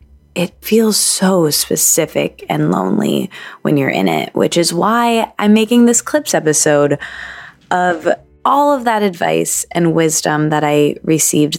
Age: 20-39